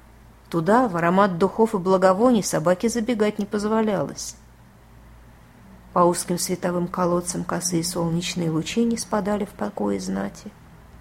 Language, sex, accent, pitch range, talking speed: Russian, female, native, 165-220 Hz, 120 wpm